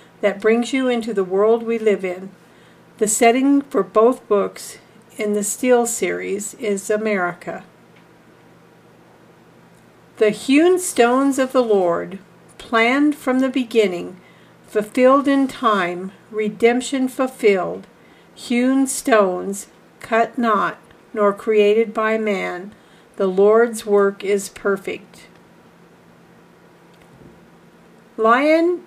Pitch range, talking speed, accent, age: 200-250 Hz, 100 wpm, American, 50-69